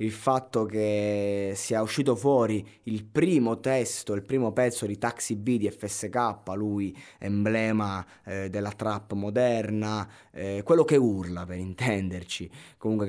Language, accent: Italian, native